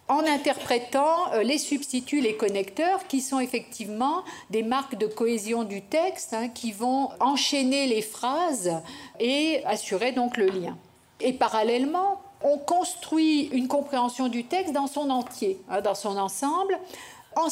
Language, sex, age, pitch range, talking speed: French, female, 50-69, 220-290 Hz, 145 wpm